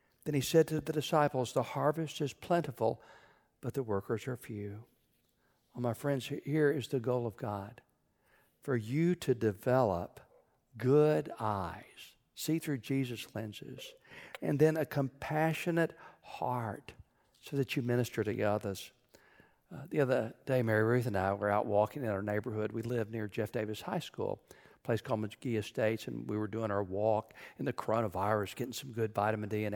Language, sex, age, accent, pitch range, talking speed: English, male, 60-79, American, 110-145 Hz, 175 wpm